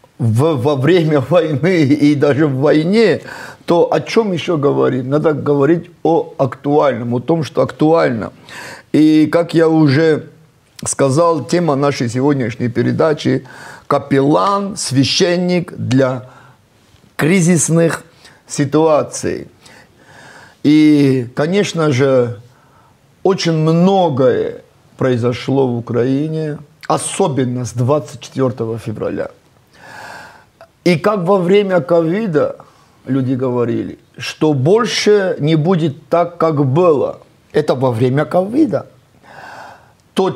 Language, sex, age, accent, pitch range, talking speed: Russian, male, 50-69, native, 130-170 Hz, 95 wpm